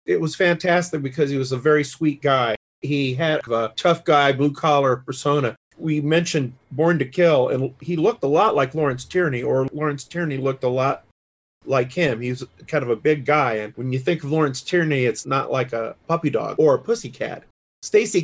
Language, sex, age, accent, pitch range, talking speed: English, male, 40-59, American, 130-160 Hz, 205 wpm